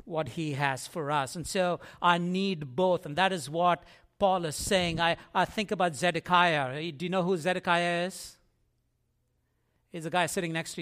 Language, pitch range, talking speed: English, 165-210 Hz, 190 wpm